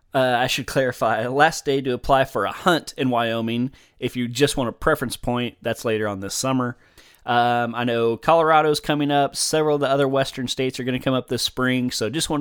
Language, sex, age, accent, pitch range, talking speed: English, male, 20-39, American, 125-150 Hz, 225 wpm